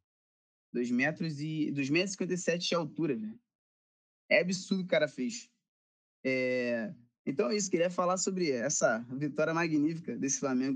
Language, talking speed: Portuguese, 145 wpm